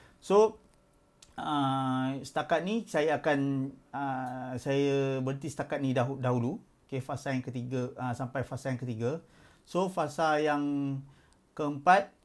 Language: Malay